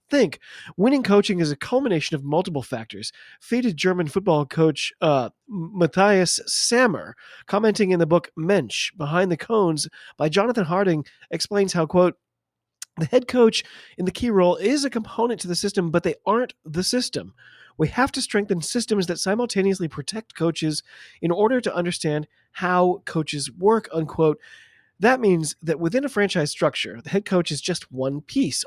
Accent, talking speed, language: American, 165 wpm, English